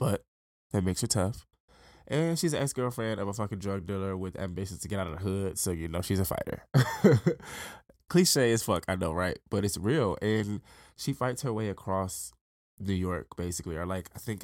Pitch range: 85-110 Hz